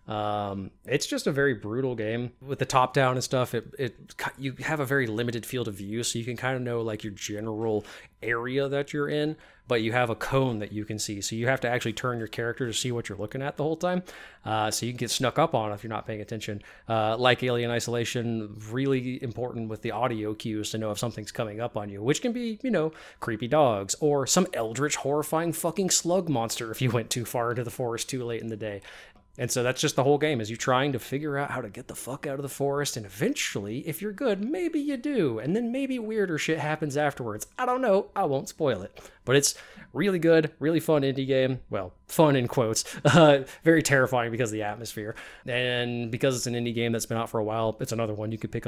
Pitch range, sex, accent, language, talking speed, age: 110-140 Hz, male, American, English, 245 wpm, 20-39